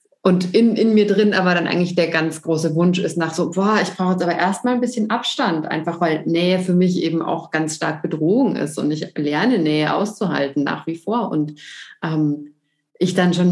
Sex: female